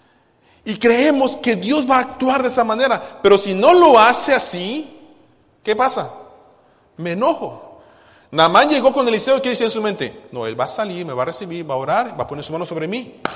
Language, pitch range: Spanish, 150-235 Hz